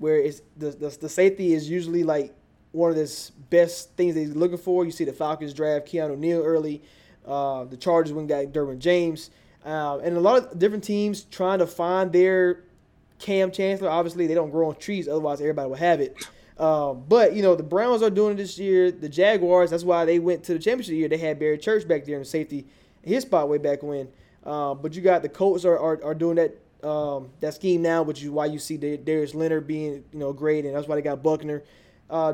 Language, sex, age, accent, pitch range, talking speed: English, male, 20-39, American, 150-185 Hz, 230 wpm